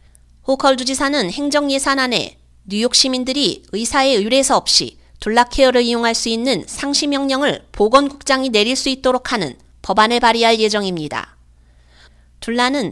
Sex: female